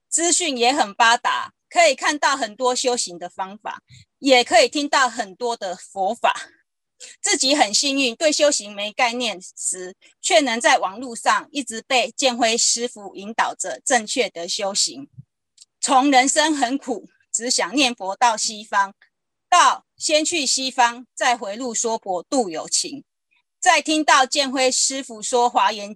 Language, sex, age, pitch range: Chinese, female, 30-49, 220-285 Hz